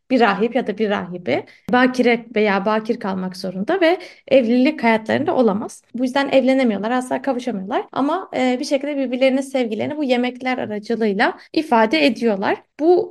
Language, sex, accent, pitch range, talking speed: Turkish, female, native, 235-295 Hz, 140 wpm